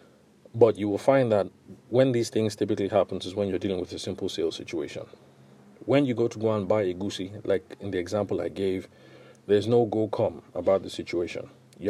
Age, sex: 40-59, male